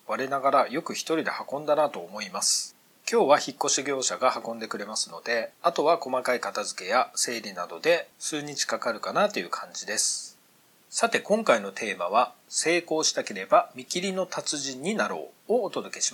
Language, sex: Japanese, male